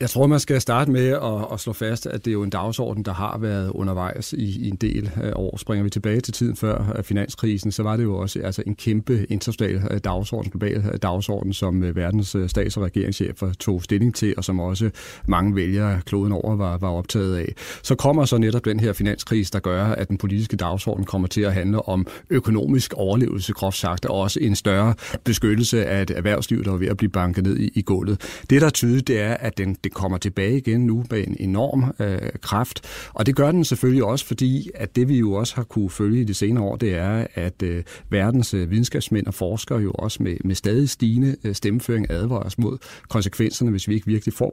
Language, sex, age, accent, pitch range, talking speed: Danish, male, 40-59, native, 100-120 Hz, 215 wpm